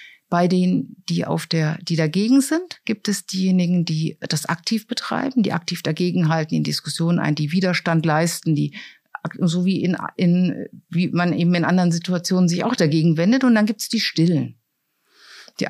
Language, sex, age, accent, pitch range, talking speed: German, female, 50-69, German, 165-210 Hz, 180 wpm